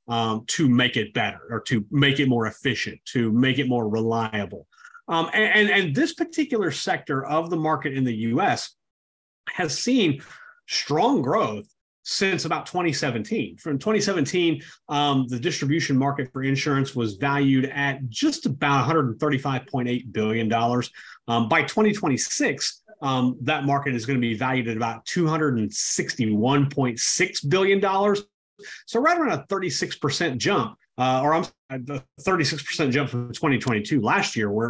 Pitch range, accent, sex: 120-165 Hz, American, male